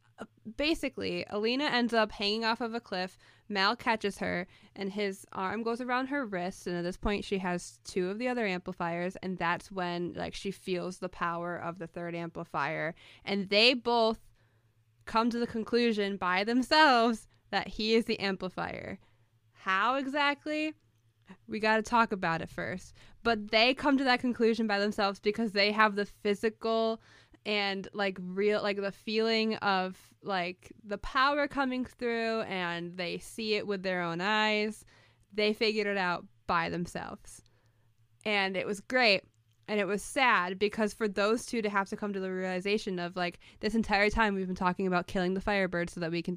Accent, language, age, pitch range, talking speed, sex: American, English, 10-29, 180-235 Hz, 180 wpm, female